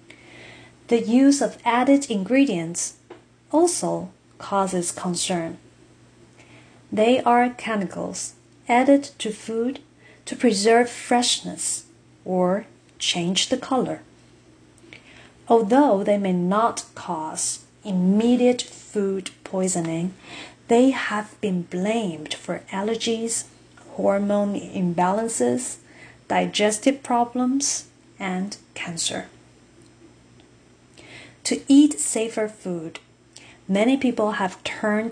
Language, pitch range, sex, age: Chinese, 185-245 Hz, female, 40-59